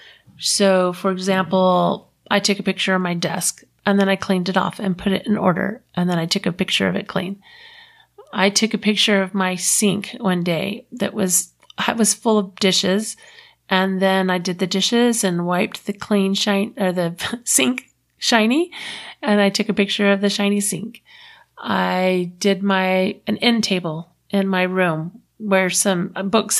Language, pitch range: English, 180-215 Hz